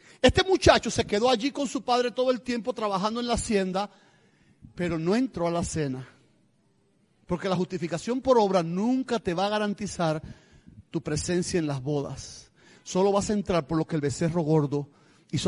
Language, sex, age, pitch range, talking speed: Spanish, male, 40-59, 155-210 Hz, 180 wpm